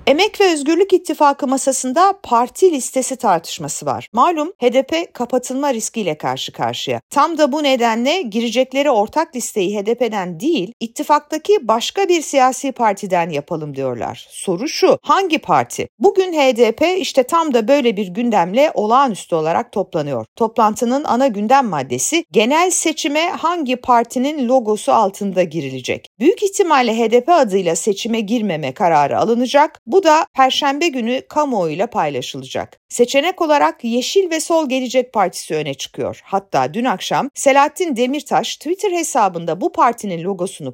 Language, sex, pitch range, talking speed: Turkish, female, 220-300 Hz, 135 wpm